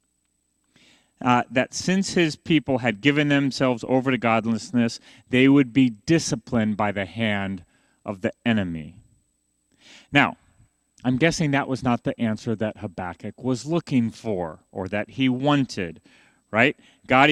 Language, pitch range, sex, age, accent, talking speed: English, 115-150 Hz, male, 30-49, American, 140 wpm